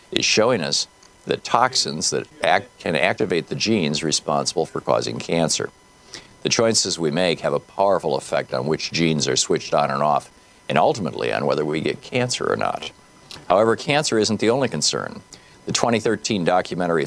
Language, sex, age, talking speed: English, male, 50-69, 170 wpm